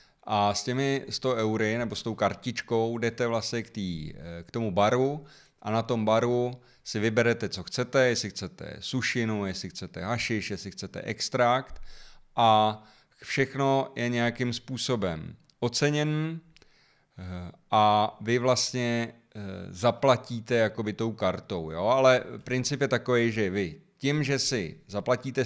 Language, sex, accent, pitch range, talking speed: Czech, male, native, 100-125 Hz, 135 wpm